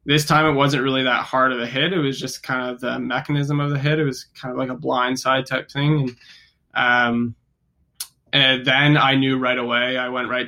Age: 20-39